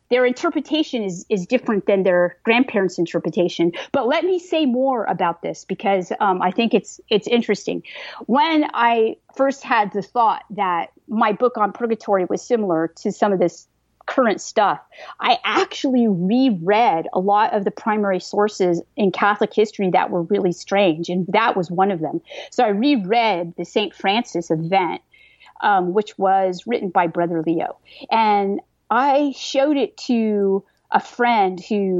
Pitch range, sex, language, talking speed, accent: 185-235 Hz, female, English, 160 wpm, American